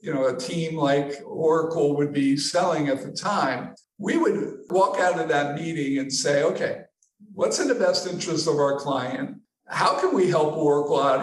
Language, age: English, 50-69